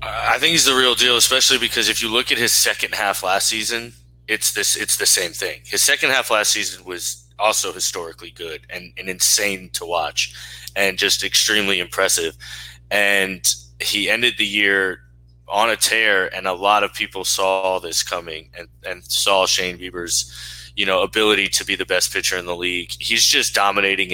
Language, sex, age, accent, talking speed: English, male, 20-39, American, 185 wpm